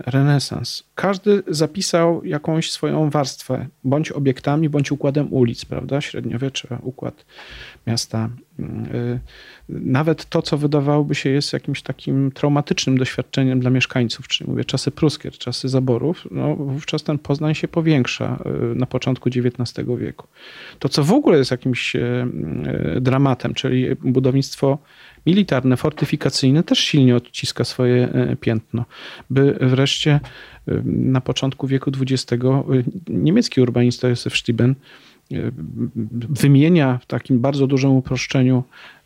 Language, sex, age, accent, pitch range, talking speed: Polish, male, 40-59, native, 125-150 Hz, 115 wpm